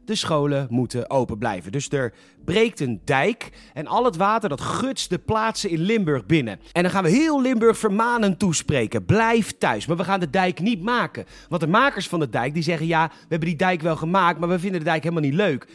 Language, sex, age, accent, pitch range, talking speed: Dutch, male, 40-59, Dutch, 145-220 Hz, 235 wpm